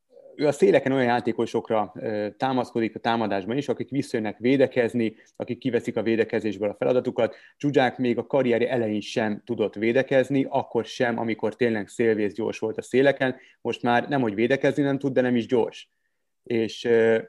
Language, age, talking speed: Hungarian, 30-49, 160 wpm